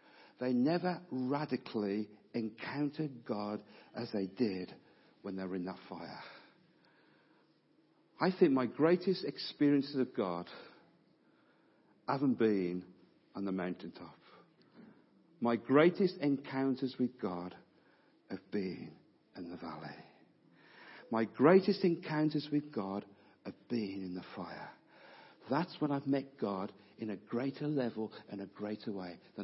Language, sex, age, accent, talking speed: English, male, 50-69, British, 120 wpm